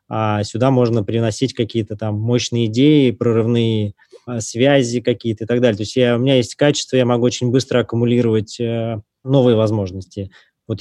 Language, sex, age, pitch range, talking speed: Russian, male, 20-39, 110-125 Hz, 155 wpm